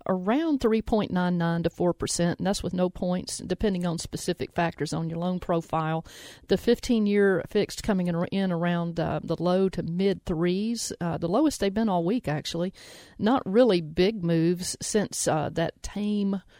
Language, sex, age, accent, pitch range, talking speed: English, female, 40-59, American, 165-195 Hz, 160 wpm